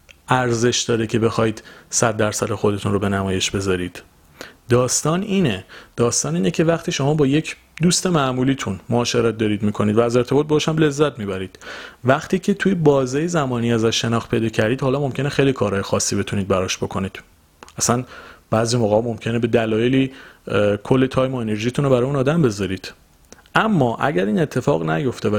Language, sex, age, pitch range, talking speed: Persian, male, 40-59, 105-135 Hz, 160 wpm